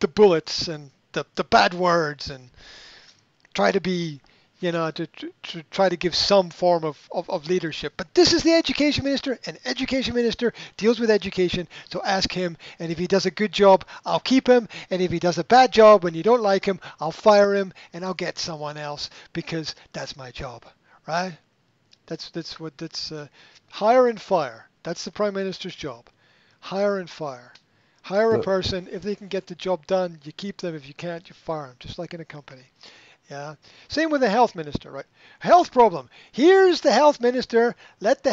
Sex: male